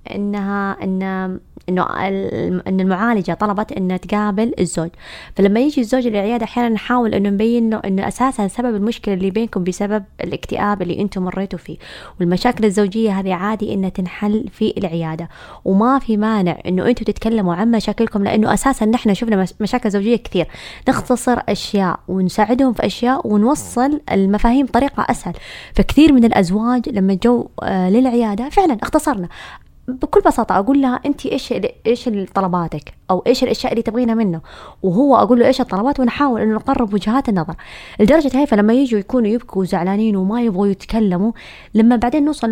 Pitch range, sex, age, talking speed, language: 195-250 Hz, female, 20-39, 150 wpm, Arabic